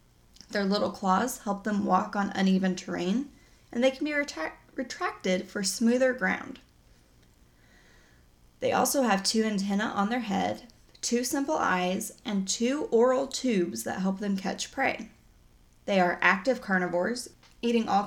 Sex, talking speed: female, 145 wpm